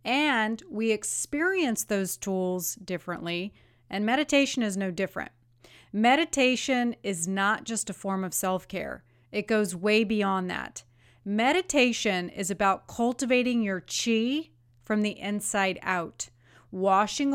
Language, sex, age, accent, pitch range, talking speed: English, female, 30-49, American, 185-235 Hz, 120 wpm